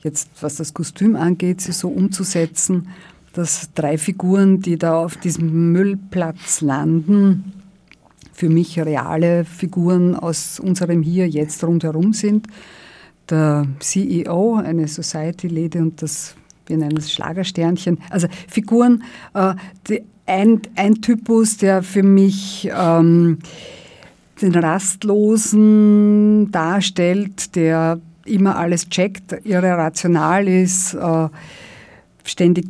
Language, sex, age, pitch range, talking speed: German, female, 50-69, 165-195 Hz, 100 wpm